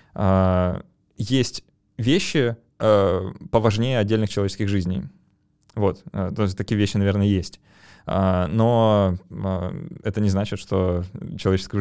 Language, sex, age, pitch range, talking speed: Russian, male, 20-39, 95-110 Hz, 95 wpm